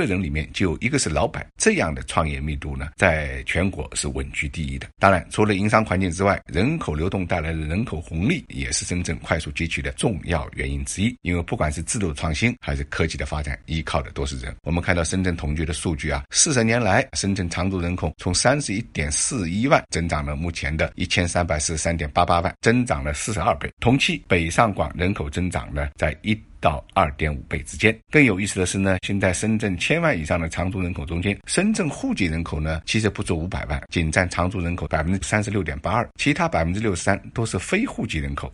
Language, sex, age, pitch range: Chinese, male, 50-69, 75-100 Hz